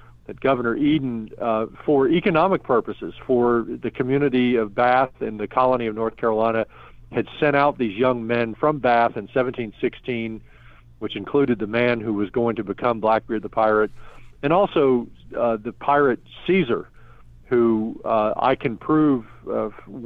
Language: English